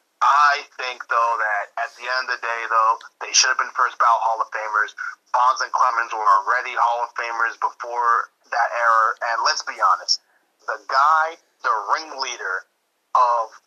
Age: 30-49